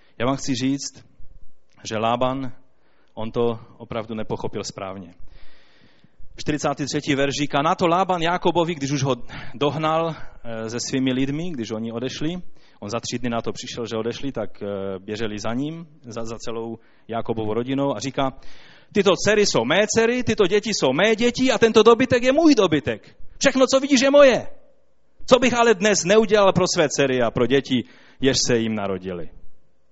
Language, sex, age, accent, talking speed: Czech, male, 30-49, native, 170 wpm